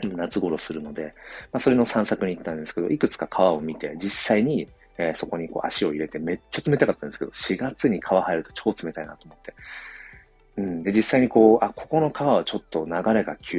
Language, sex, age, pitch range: Japanese, male, 40-59, 80-115 Hz